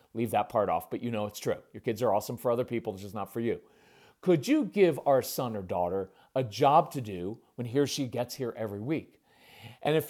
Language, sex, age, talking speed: English, male, 40-59, 250 wpm